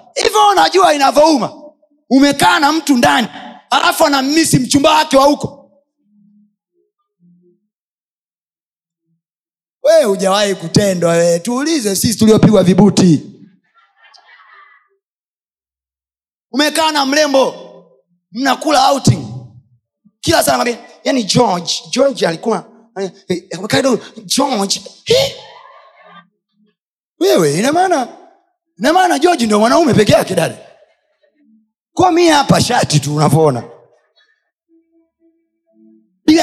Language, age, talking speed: Swahili, 30-49, 90 wpm